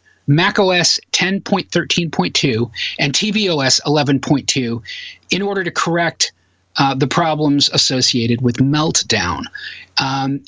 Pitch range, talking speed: 130-170 Hz, 95 wpm